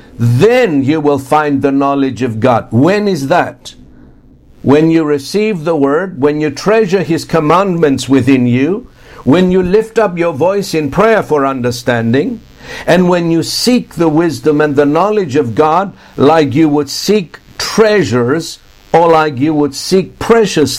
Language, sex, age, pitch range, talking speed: English, male, 60-79, 135-175 Hz, 160 wpm